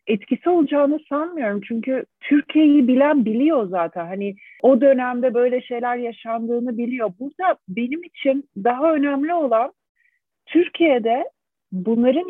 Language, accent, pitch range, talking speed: Turkish, native, 205-270 Hz, 110 wpm